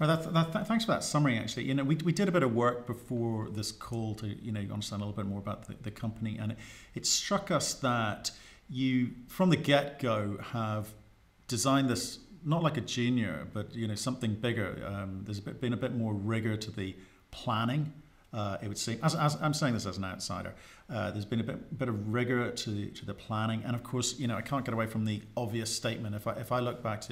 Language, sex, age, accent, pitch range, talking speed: English, male, 40-59, British, 105-125 Hz, 230 wpm